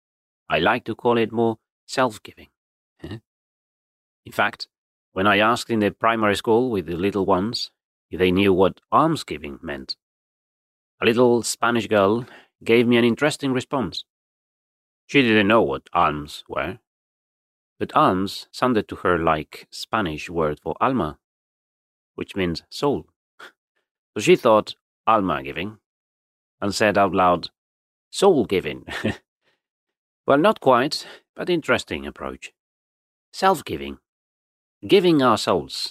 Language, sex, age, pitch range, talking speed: English, male, 30-49, 75-120 Hz, 120 wpm